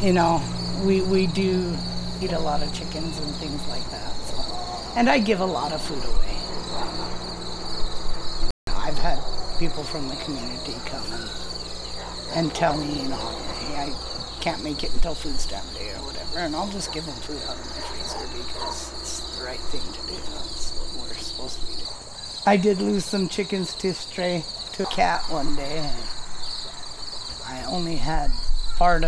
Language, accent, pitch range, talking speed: English, American, 140-185 Hz, 180 wpm